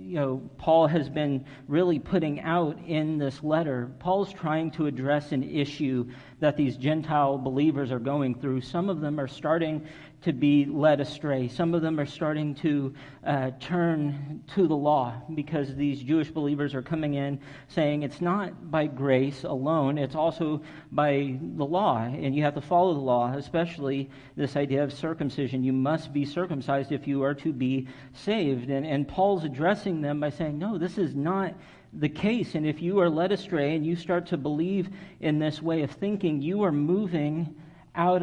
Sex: male